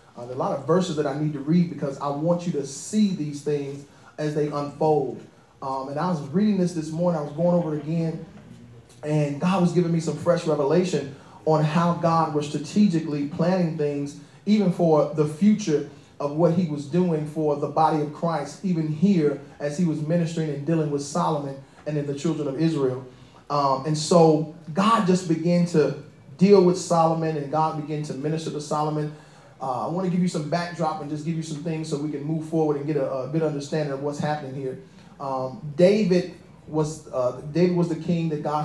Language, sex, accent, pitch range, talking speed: English, male, American, 145-170 Hz, 215 wpm